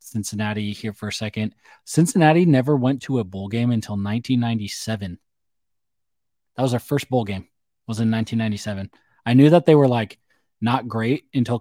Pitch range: 110-130 Hz